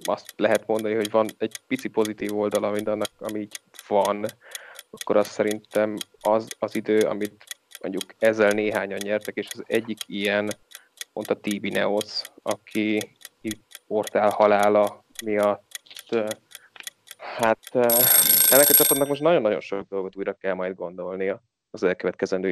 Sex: male